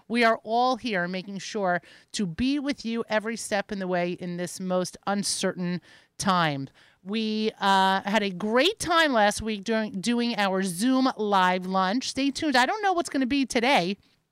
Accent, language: American, English